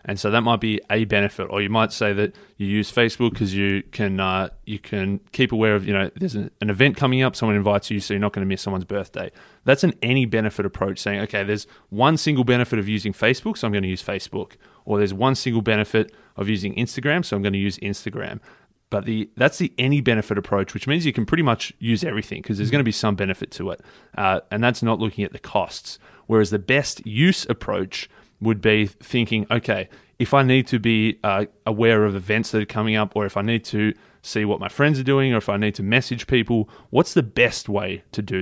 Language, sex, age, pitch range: English, male, 20-39, 100-125 Hz